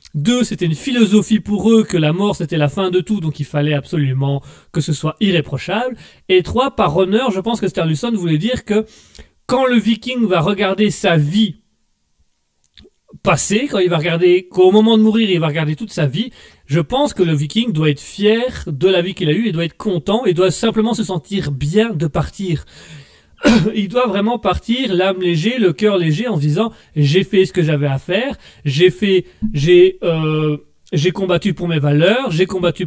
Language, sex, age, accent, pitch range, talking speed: French, male, 30-49, French, 155-205 Hz, 205 wpm